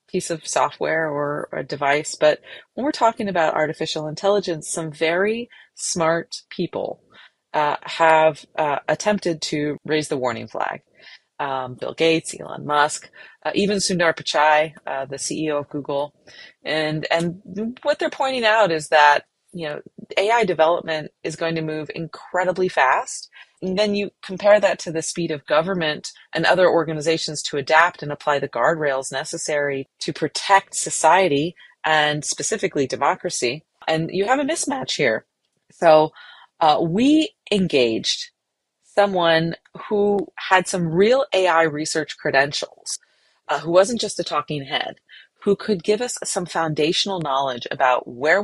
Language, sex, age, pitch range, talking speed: English, female, 30-49, 150-195 Hz, 145 wpm